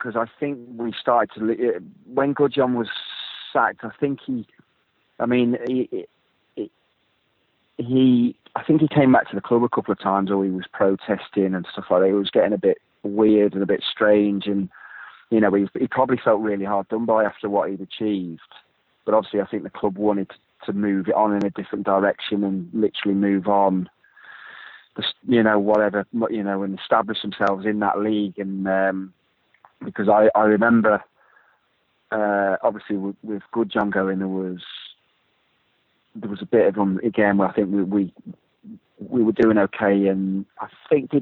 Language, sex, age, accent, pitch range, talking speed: English, male, 30-49, British, 100-115 Hz, 185 wpm